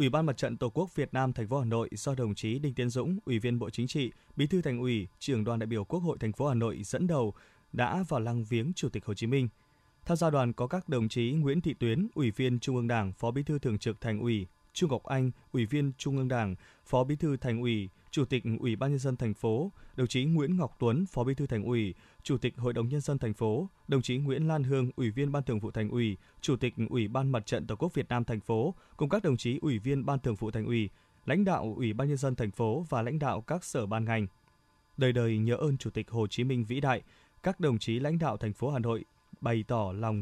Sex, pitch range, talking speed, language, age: male, 115-145 Hz, 270 wpm, Vietnamese, 20-39